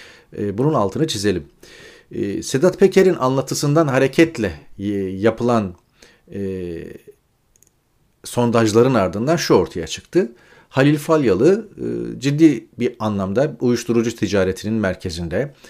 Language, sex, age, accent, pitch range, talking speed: Turkish, male, 40-59, native, 95-135 Hz, 80 wpm